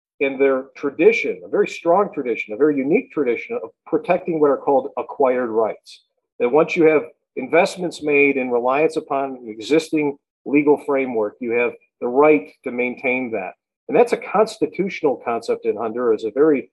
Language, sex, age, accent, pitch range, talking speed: English, male, 50-69, American, 135-215 Hz, 170 wpm